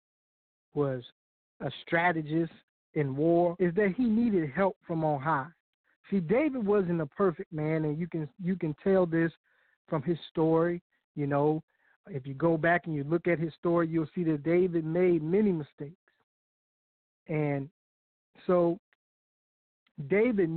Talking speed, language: 150 wpm, English